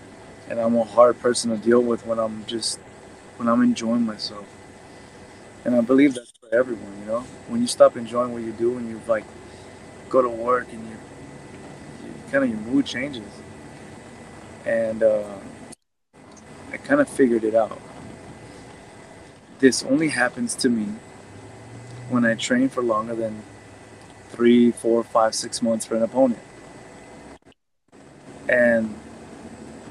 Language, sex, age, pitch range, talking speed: English, male, 30-49, 110-130 Hz, 140 wpm